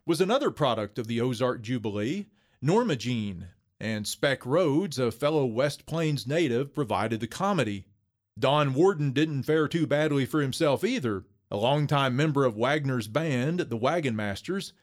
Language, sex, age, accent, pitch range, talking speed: English, male, 40-59, American, 120-155 Hz, 155 wpm